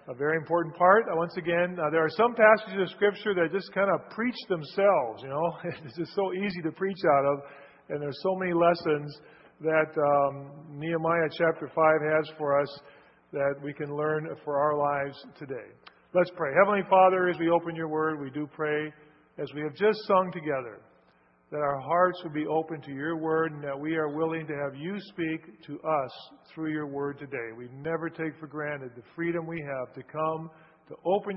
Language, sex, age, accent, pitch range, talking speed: English, male, 40-59, American, 145-175 Hz, 200 wpm